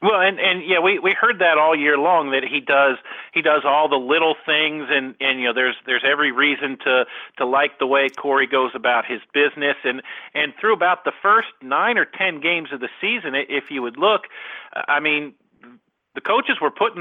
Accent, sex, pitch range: American, male, 130-155 Hz